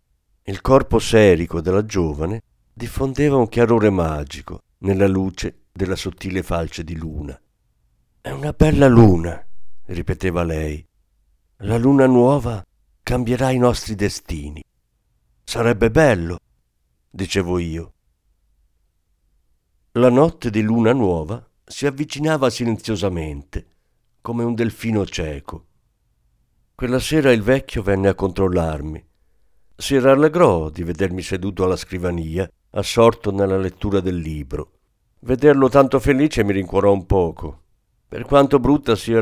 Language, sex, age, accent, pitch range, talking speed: Italian, male, 50-69, native, 85-120 Hz, 115 wpm